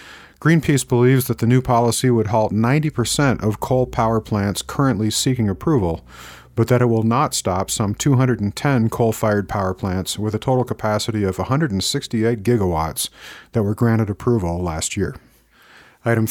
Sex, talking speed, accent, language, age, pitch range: male, 150 wpm, American, English, 40-59, 105-125 Hz